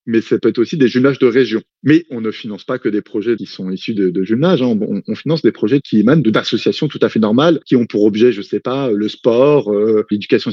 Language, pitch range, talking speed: French, 110-140 Hz, 260 wpm